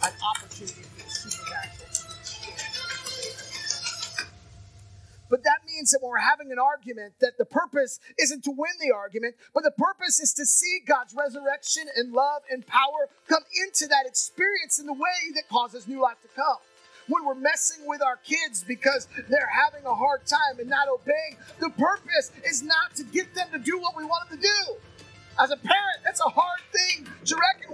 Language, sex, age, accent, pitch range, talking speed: English, male, 30-49, American, 275-360 Hz, 180 wpm